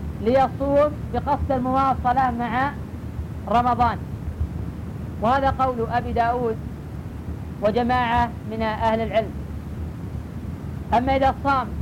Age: 40-59